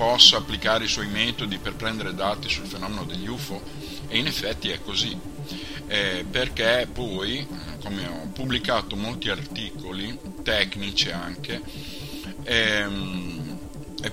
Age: 50-69